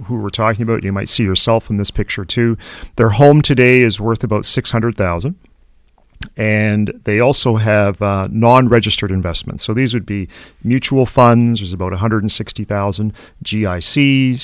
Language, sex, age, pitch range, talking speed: English, male, 40-59, 95-120 Hz, 150 wpm